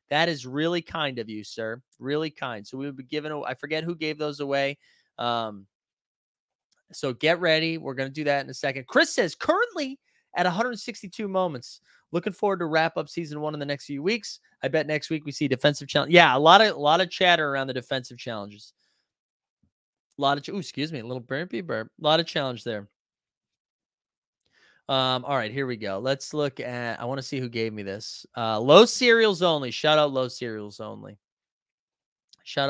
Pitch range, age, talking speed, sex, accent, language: 130-170 Hz, 20-39, 210 wpm, male, American, English